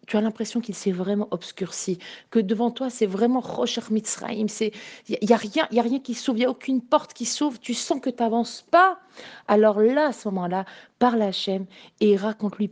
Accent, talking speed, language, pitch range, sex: French, 215 wpm, French, 195-240 Hz, female